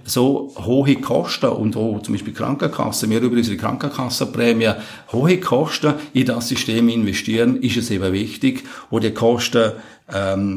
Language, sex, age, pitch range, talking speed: German, male, 50-69, 110-130 Hz, 150 wpm